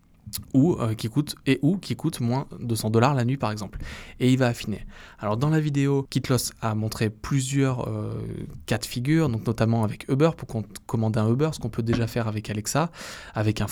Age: 20-39